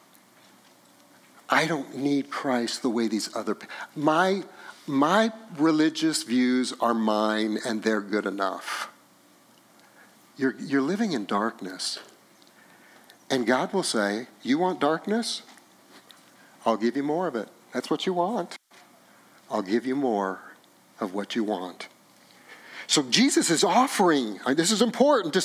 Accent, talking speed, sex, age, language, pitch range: American, 135 wpm, male, 60-79, English, 130-210 Hz